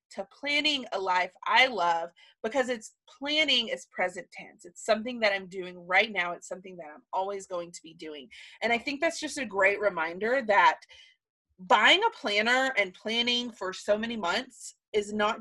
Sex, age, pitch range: female, 30-49, 190-265 Hz